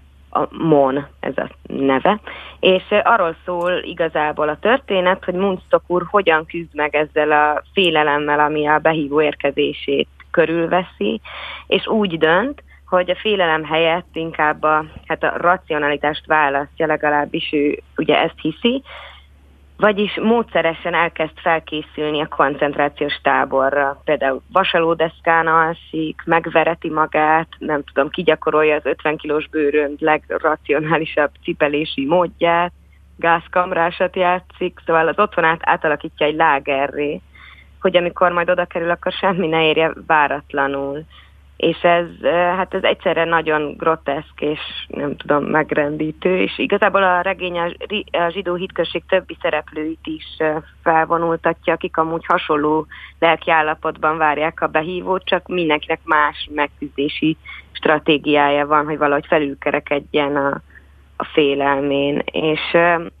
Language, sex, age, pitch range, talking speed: Hungarian, female, 30-49, 150-175 Hz, 115 wpm